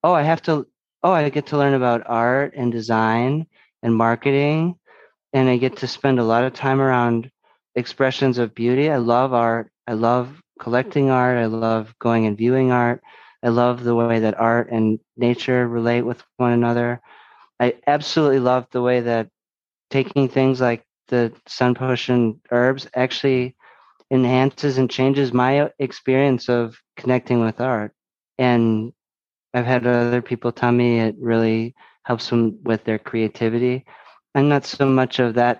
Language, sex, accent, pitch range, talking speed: English, male, American, 115-130 Hz, 160 wpm